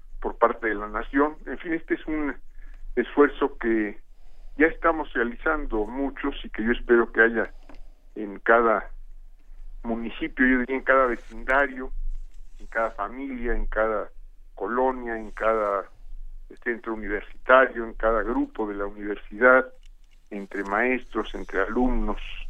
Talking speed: 135 wpm